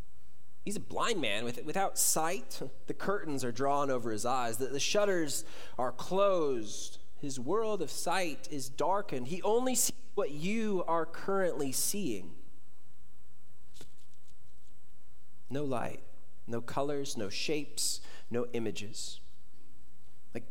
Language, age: English, 20-39